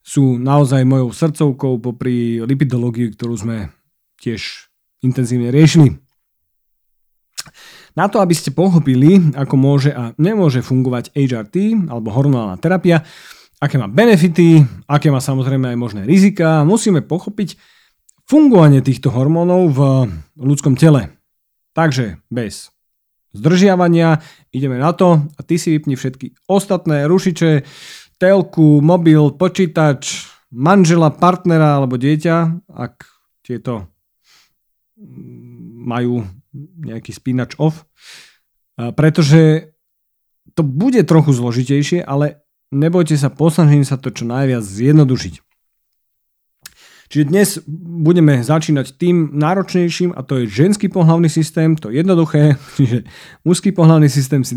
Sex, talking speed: male, 110 wpm